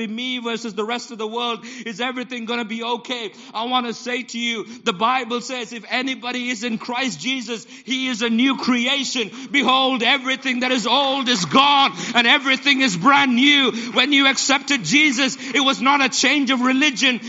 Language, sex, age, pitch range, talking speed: English, male, 50-69, 225-275 Hz, 195 wpm